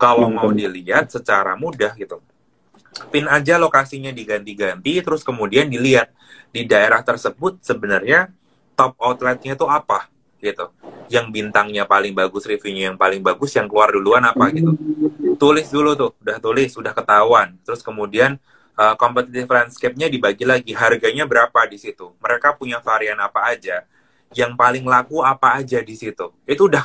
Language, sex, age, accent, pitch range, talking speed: Indonesian, male, 20-39, native, 105-150 Hz, 145 wpm